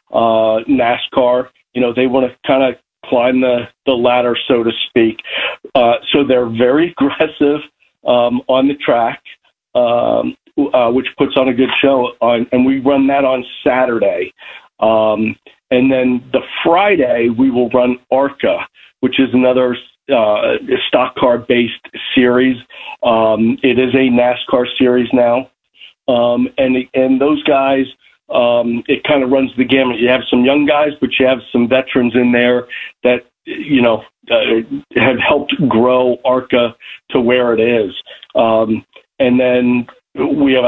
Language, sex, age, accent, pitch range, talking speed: English, male, 50-69, American, 120-135 Hz, 155 wpm